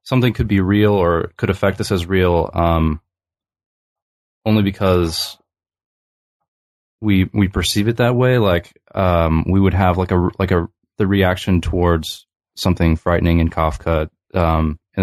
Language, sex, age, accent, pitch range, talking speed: English, male, 20-39, American, 80-95 Hz, 150 wpm